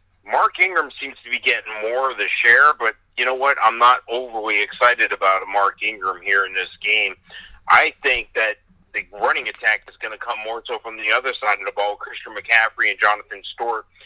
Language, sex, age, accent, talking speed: English, male, 40-59, American, 215 wpm